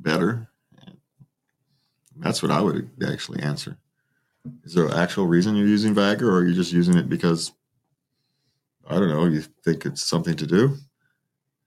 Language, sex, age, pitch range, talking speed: English, male, 40-59, 100-165 Hz, 160 wpm